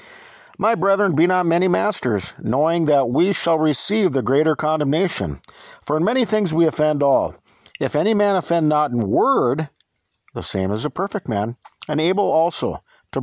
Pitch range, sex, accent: 145-225 Hz, male, American